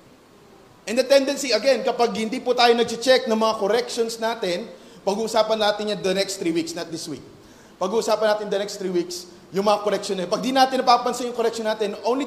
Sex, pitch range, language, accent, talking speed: male, 205-270 Hz, Filipino, native, 205 wpm